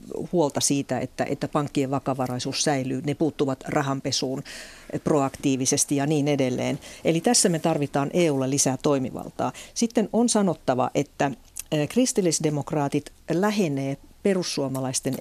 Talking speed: 110 wpm